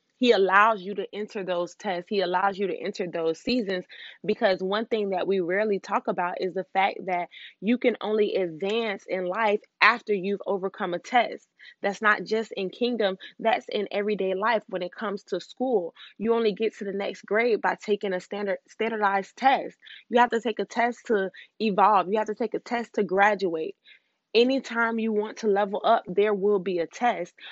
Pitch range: 185-225 Hz